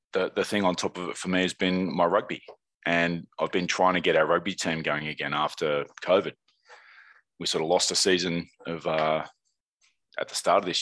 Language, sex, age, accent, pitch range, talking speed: English, male, 20-39, Australian, 80-90 Hz, 215 wpm